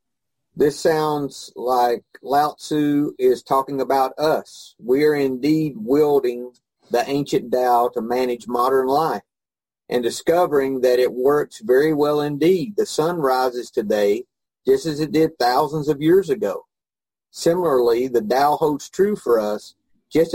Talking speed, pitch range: 140 wpm, 125-160 Hz